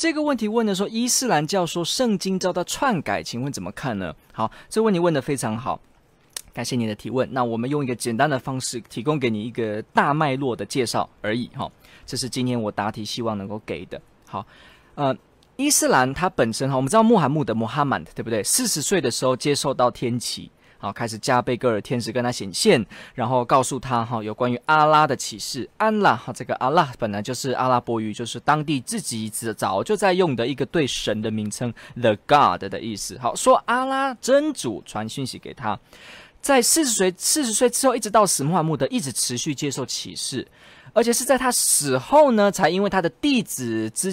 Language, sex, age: Chinese, male, 20-39